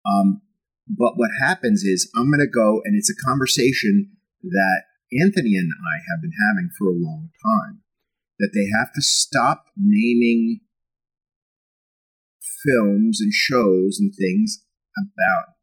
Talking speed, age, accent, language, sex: 140 wpm, 30-49, American, English, male